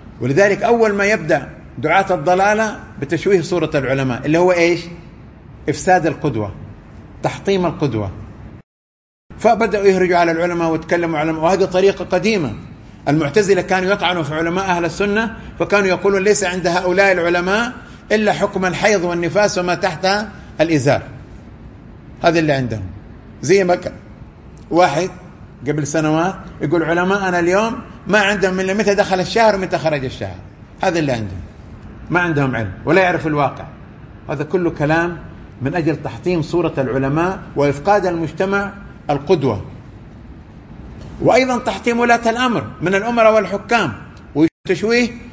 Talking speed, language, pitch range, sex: 125 wpm, Arabic, 135-195 Hz, male